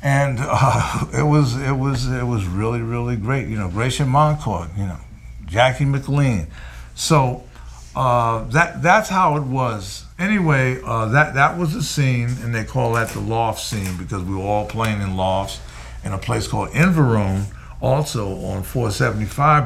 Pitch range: 95-130 Hz